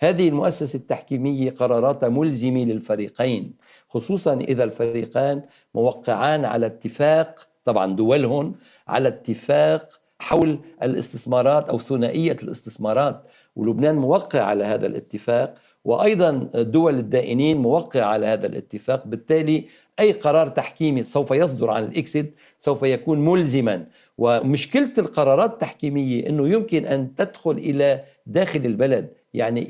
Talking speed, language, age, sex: 110 wpm, Arabic, 60-79, male